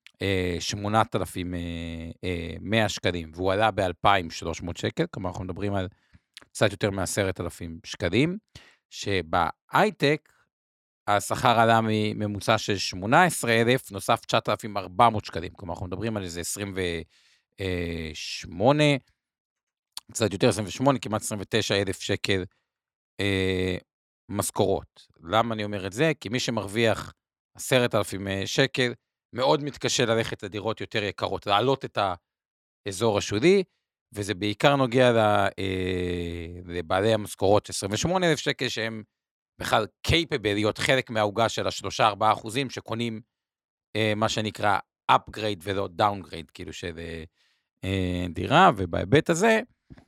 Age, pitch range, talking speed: 50-69, 95-115 Hz, 105 wpm